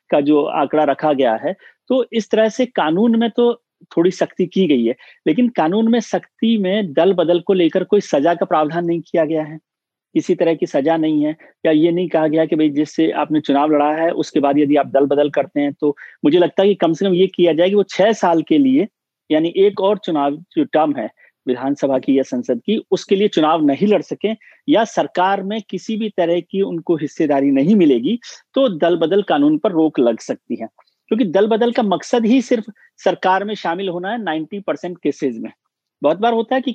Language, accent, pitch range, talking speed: Hindi, native, 155-220 Hz, 220 wpm